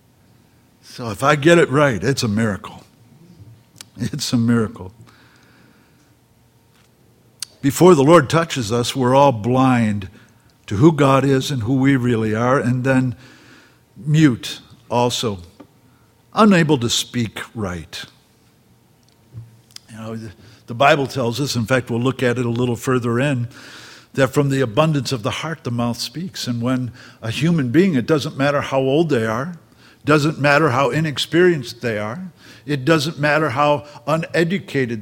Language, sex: English, male